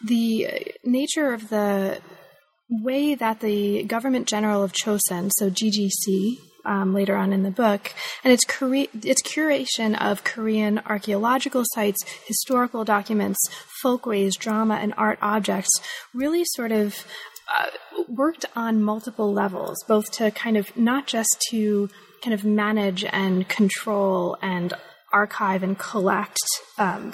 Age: 20-39